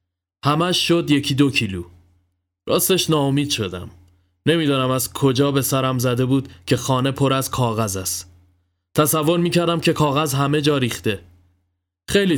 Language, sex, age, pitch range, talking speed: Persian, male, 20-39, 110-150 Hz, 140 wpm